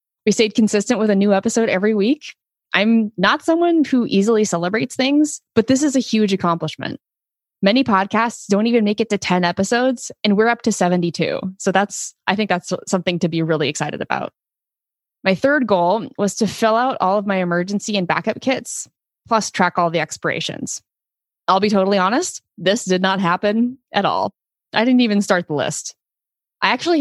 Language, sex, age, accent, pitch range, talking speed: English, female, 20-39, American, 175-220 Hz, 185 wpm